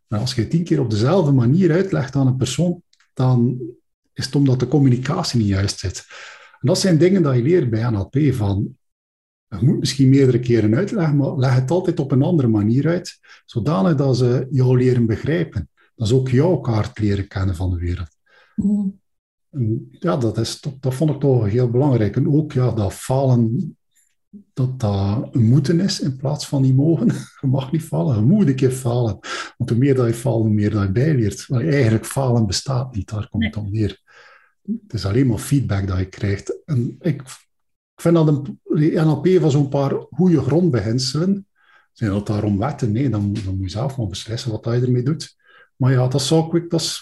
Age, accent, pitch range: 50-69, Dutch, 110-150 Hz